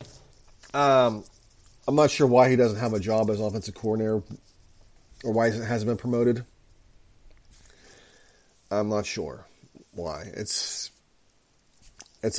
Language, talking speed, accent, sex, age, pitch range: English, 120 wpm, American, male, 40-59, 110-135 Hz